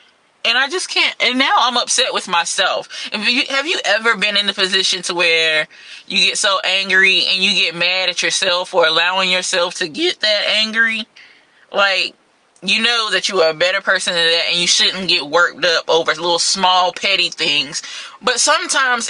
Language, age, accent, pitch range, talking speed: English, 20-39, American, 180-275 Hz, 190 wpm